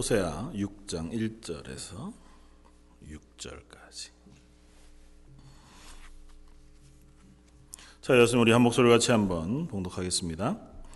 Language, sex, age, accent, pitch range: Korean, male, 40-59, native, 90-130 Hz